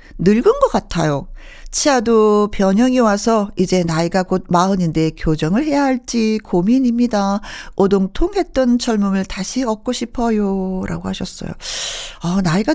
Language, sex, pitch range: Korean, female, 190-250 Hz